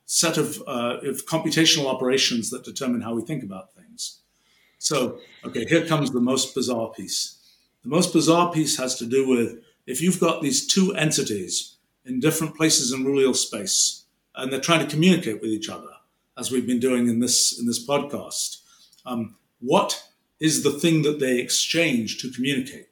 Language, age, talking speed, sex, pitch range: English, 50-69, 175 wpm, male, 125-160 Hz